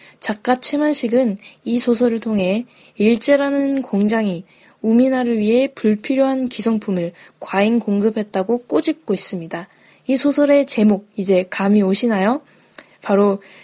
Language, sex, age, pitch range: Korean, female, 10-29, 200-255 Hz